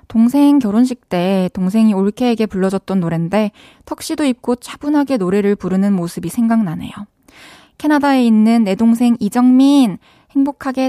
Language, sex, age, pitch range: Korean, female, 20-39, 190-250 Hz